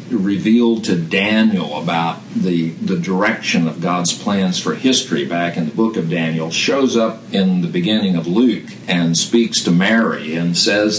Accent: American